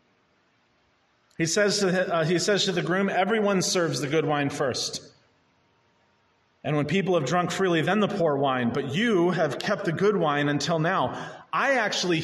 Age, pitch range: 30-49, 140-220 Hz